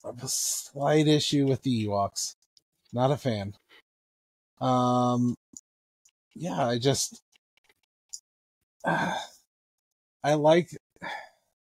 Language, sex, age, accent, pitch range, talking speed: English, male, 30-49, American, 105-145 Hz, 80 wpm